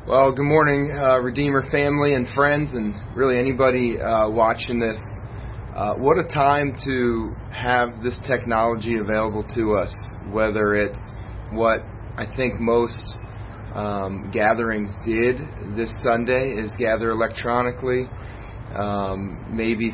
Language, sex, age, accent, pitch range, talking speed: English, male, 30-49, American, 105-125 Hz, 125 wpm